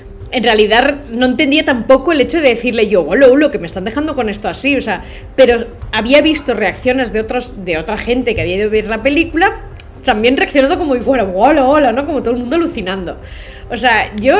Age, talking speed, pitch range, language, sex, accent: 20-39, 215 wpm, 215-275 Hz, Spanish, female, Spanish